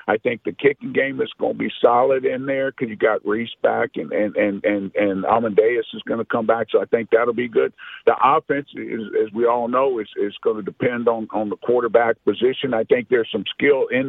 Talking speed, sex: 245 wpm, male